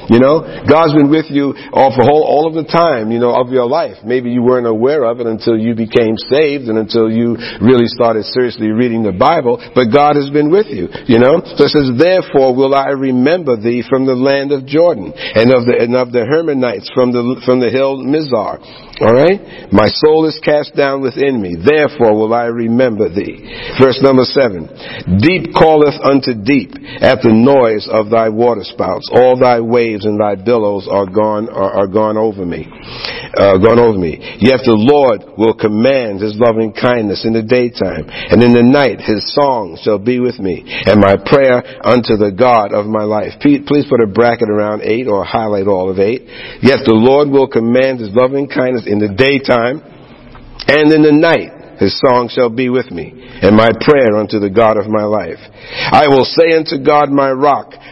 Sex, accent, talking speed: male, American, 195 wpm